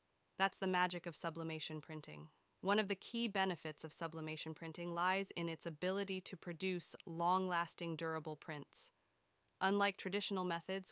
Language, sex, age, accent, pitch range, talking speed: English, female, 20-39, American, 170-200 Hz, 145 wpm